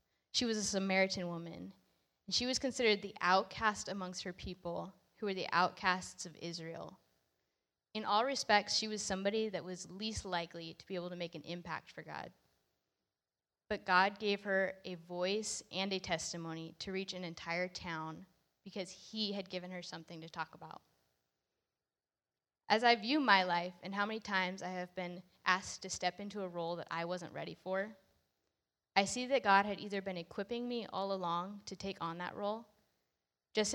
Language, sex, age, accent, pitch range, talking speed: English, female, 10-29, American, 165-205 Hz, 180 wpm